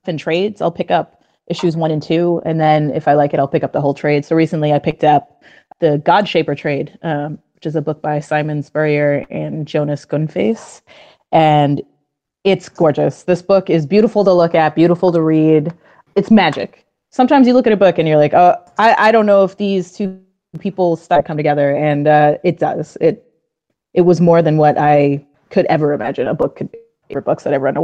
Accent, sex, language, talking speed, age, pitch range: American, female, English, 220 wpm, 20-39, 155-185 Hz